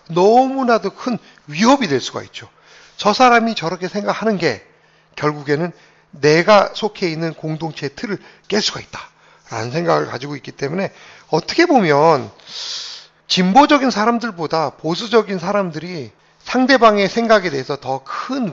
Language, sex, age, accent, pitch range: Korean, male, 40-59, native, 155-220 Hz